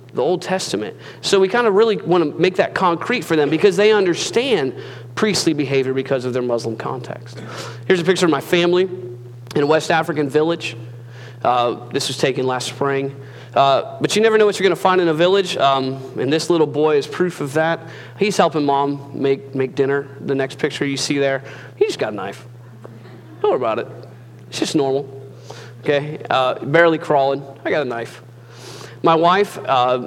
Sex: male